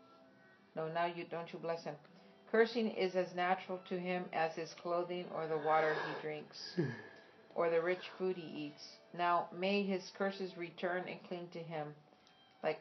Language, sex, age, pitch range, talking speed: English, female, 50-69, 165-200 Hz, 175 wpm